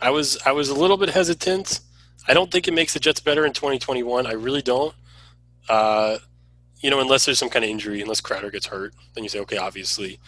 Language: English